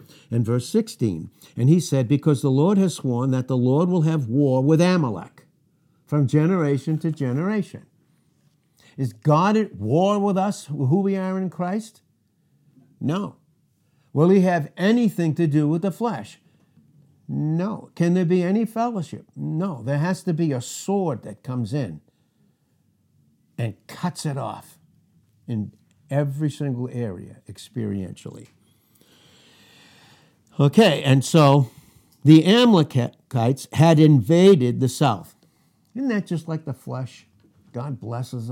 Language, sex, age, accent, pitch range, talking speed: English, male, 60-79, American, 125-165 Hz, 135 wpm